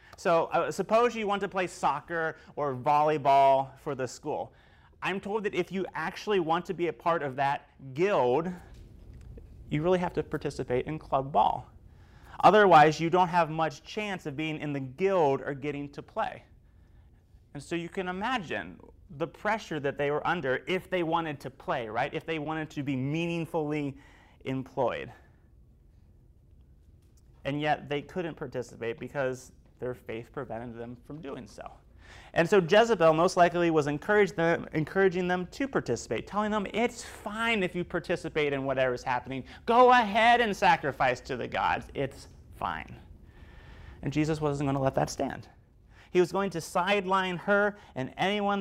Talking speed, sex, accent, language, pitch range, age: 165 wpm, male, American, English, 130-180 Hz, 30-49